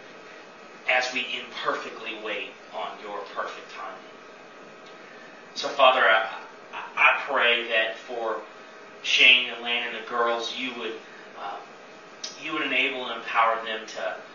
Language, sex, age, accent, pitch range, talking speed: English, male, 30-49, American, 115-160 Hz, 135 wpm